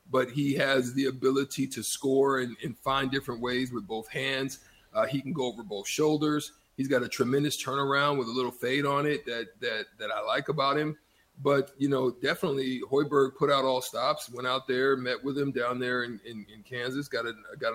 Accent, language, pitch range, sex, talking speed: American, English, 120-140 Hz, male, 215 wpm